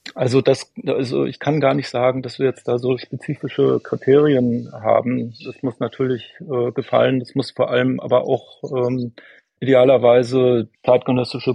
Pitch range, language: 115-130 Hz, German